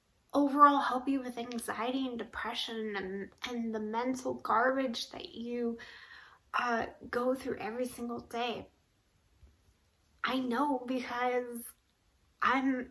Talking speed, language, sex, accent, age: 110 wpm, English, female, American, 20-39